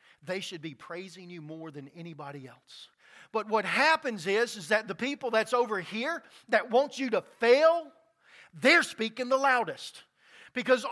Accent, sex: American, male